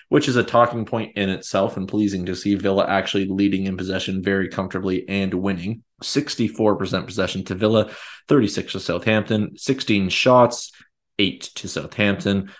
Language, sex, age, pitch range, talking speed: English, male, 20-39, 95-105 Hz, 150 wpm